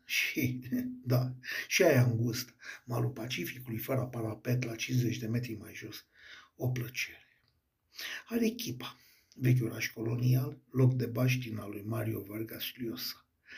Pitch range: 120-135 Hz